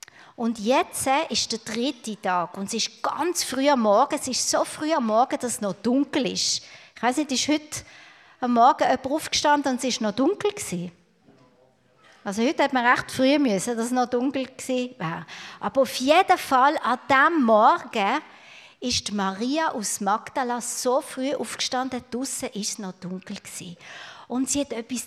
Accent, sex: Austrian, female